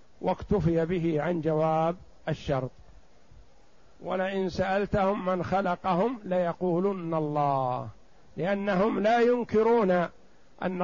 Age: 50-69